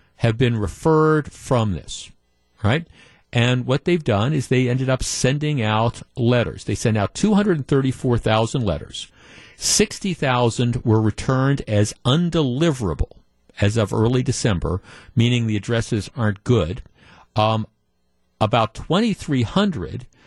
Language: English